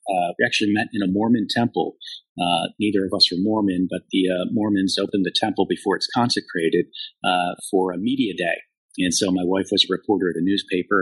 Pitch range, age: 95-115 Hz, 40-59